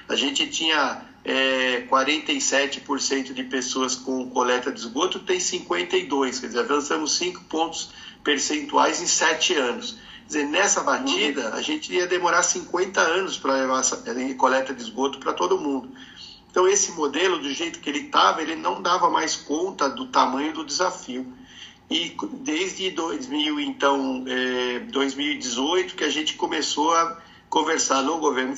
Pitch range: 130-180 Hz